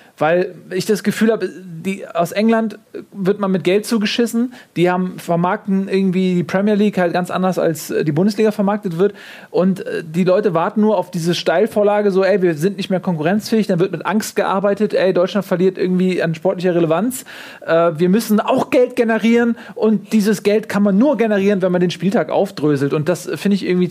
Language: German